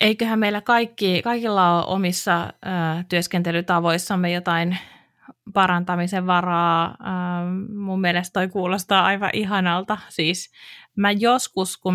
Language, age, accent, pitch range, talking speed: Finnish, 20-39, native, 165-185 Hz, 105 wpm